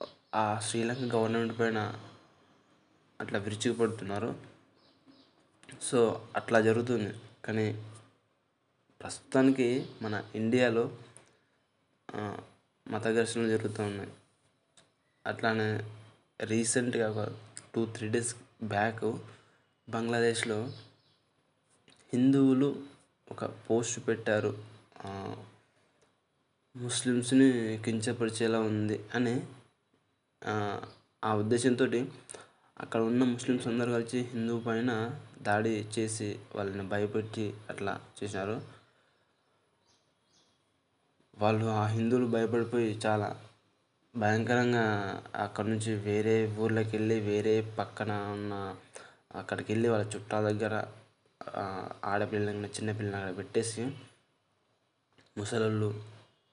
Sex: male